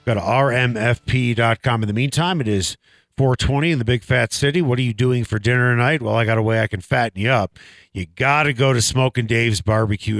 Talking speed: 230 wpm